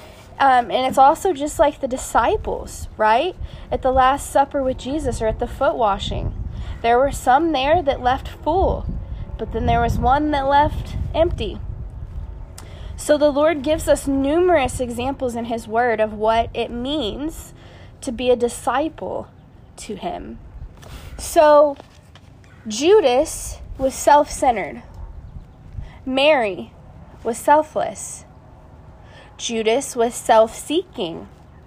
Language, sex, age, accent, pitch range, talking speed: English, female, 20-39, American, 220-290 Hz, 125 wpm